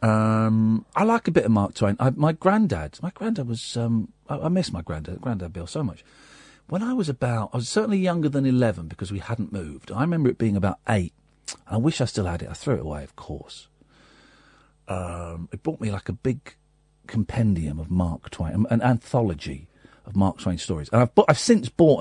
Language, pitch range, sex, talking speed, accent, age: English, 95-150 Hz, male, 210 wpm, British, 40-59